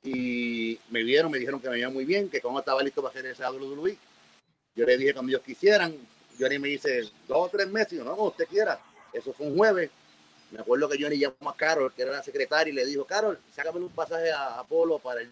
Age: 40-59